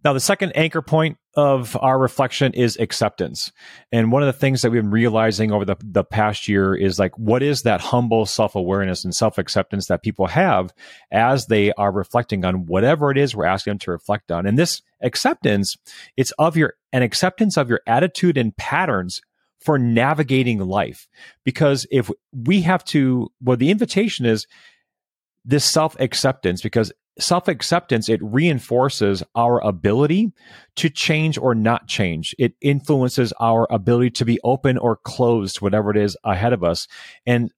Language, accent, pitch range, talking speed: English, American, 105-140 Hz, 170 wpm